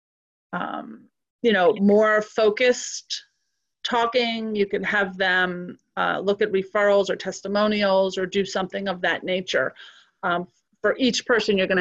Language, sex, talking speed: English, female, 140 wpm